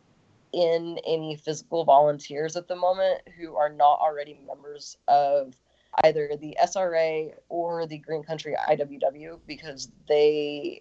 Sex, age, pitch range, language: female, 20-39, 150-185 Hz, English